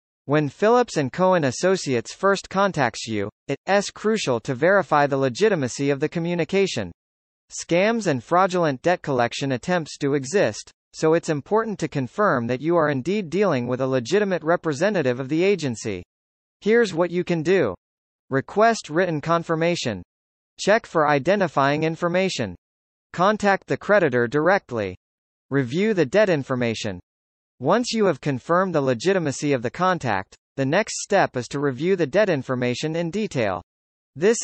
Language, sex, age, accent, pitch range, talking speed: English, male, 40-59, American, 125-185 Hz, 145 wpm